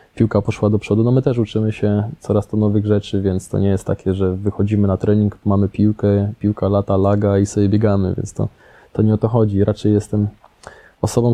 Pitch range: 100-110 Hz